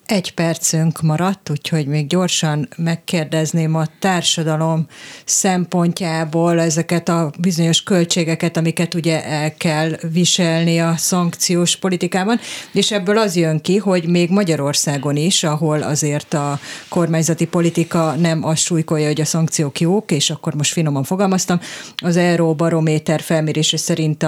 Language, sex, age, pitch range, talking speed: Hungarian, female, 30-49, 150-170 Hz, 125 wpm